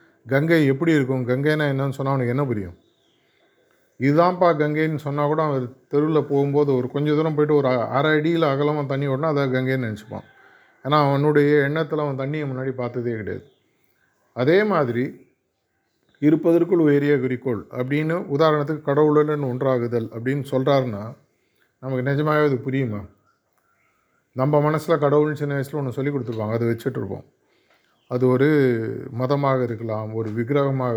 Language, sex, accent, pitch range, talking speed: Tamil, male, native, 125-150 Hz, 130 wpm